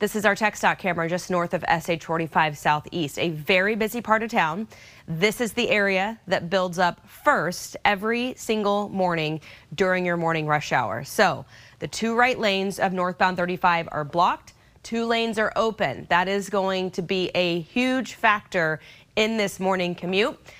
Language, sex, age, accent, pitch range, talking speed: English, female, 30-49, American, 175-215 Hz, 170 wpm